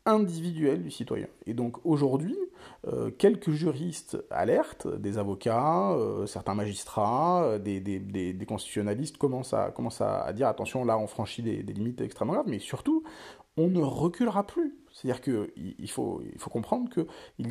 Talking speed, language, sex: 170 wpm, French, male